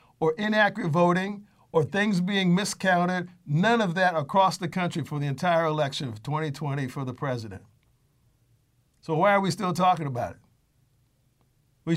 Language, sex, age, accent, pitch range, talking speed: English, male, 50-69, American, 135-185 Hz, 155 wpm